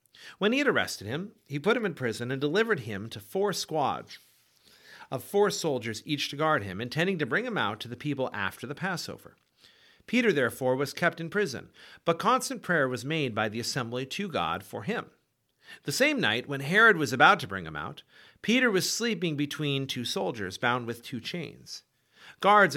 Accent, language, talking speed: American, English, 195 wpm